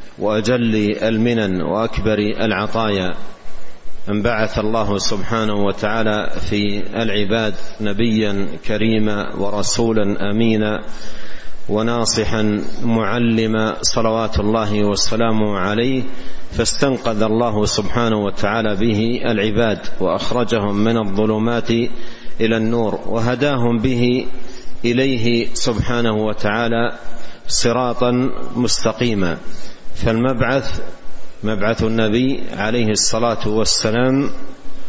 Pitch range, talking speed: 105-120 Hz, 75 wpm